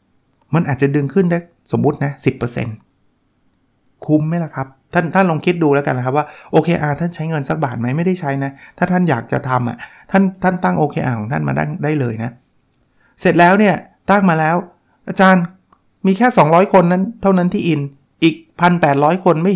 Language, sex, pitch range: Thai, male, 135-175 Hz